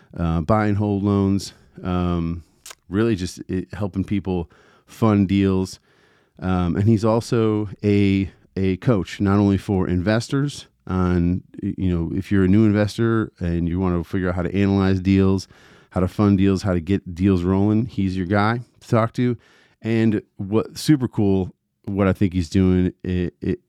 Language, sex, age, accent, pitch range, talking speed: English, male, 40-59, American, 90-110 Hz, 165 wpm